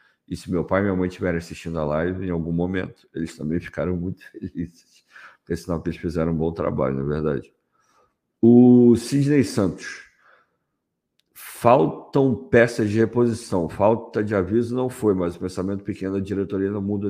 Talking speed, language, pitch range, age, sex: 170 wpm, Portuguese, 90-125 Hz, 50-69, male